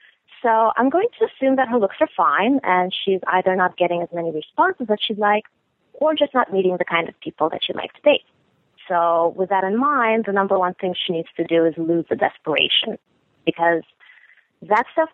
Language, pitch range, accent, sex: English, 175-245 Hz, American, female